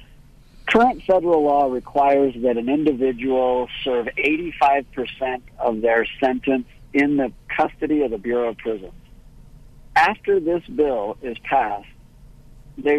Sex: male